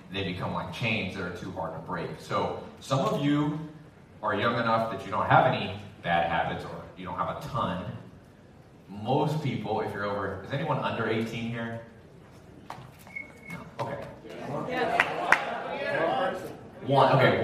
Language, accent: English, American